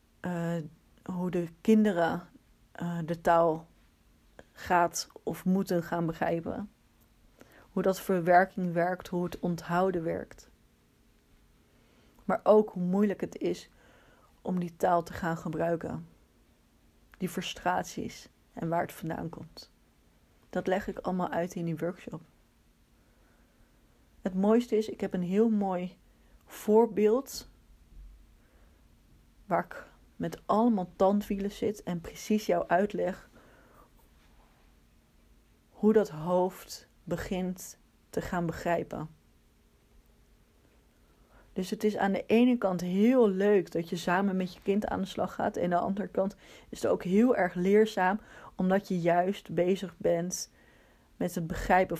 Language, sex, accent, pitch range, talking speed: Dutch, female, Dutch, 170-200 Hz, 130 wpm